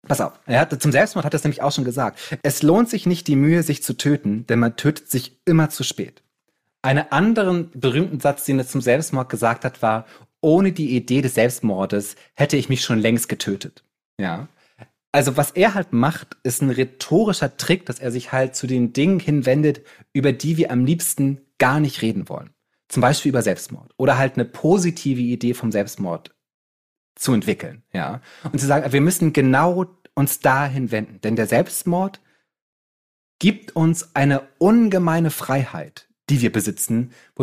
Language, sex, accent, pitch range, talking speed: German, male, German, 125-160 Hz, 175 wpm